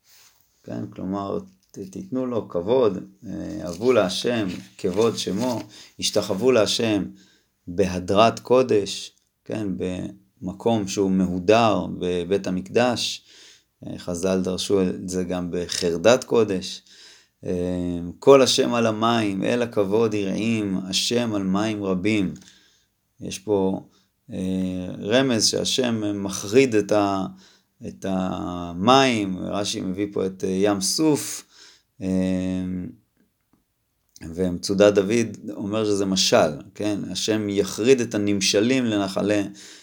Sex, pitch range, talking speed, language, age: male, 90-105 Hz, 95 wpm, Hebrew, 30-49